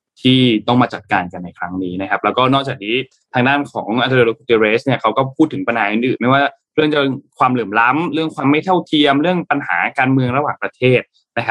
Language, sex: Thai, male